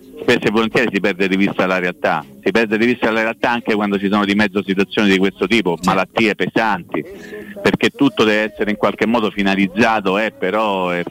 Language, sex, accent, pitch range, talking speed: Italian, male, native, 95-125 Hz, 210 wpm